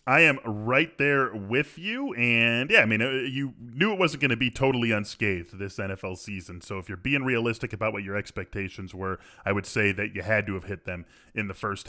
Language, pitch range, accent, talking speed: English, 105-130 Hz, American, 225 wpm